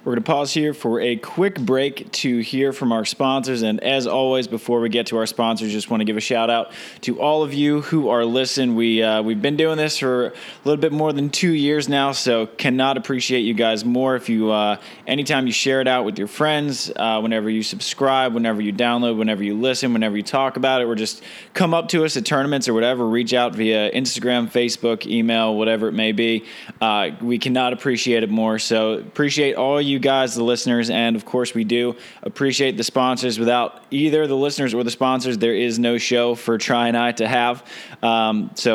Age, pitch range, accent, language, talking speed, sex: 20-39, 115-140 Hz, American, English, 225 wpm, male